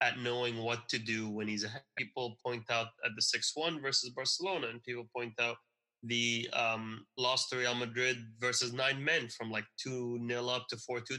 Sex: male